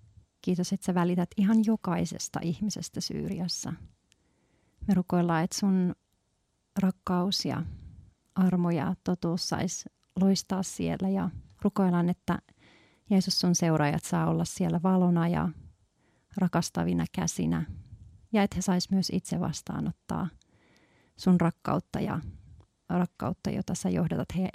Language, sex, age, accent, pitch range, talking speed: Finnish, female, 40-59, native, 170-195 Hz, 115 wpm